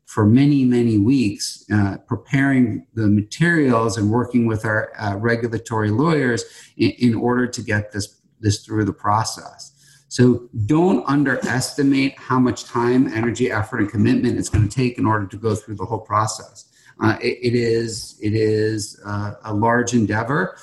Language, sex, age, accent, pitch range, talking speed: English, male, 50-69, American, 105-130 Hz, 165 wpm